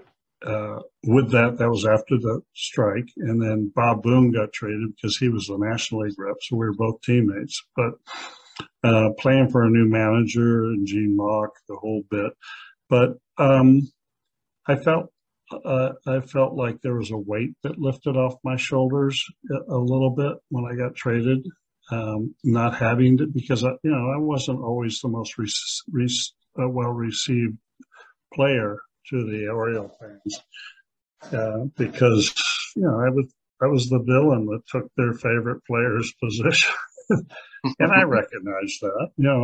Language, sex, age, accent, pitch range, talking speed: English, male, 60-79, American, 110-135 Hz, 165 wpm